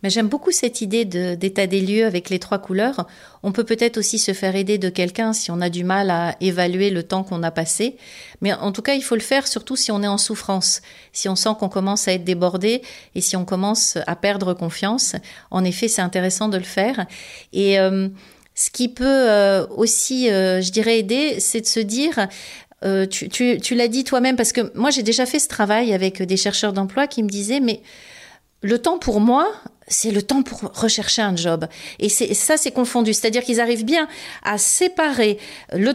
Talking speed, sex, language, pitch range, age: 220 wpm, female, French, 195-240 Hz, 40-59